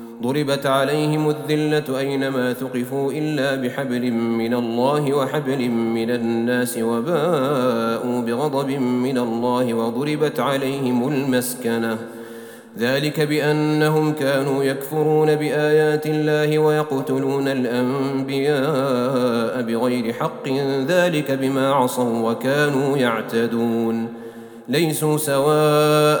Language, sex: Arabic, male